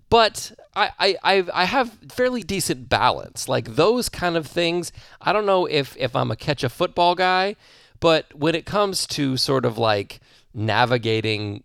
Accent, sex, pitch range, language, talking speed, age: American, male, 105-145 Hz, English, 160 wpm, 30-49